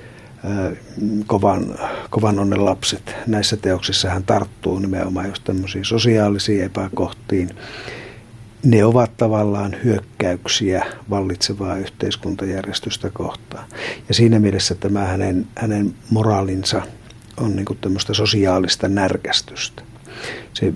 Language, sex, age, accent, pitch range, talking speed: Finnish, male, 60-79, native, 95-110 Hz, 90 wpm